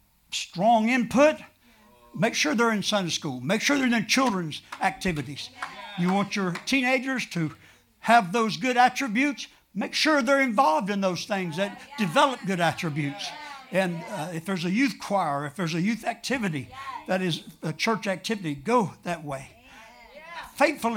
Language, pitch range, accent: English, 165-255 Hz, American